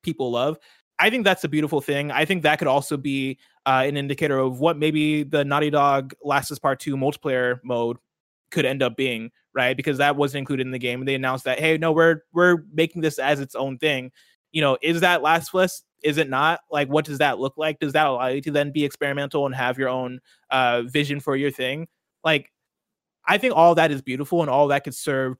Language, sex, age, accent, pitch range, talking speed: English, male, 20-39, American, 135-160 Hz, 230 wpm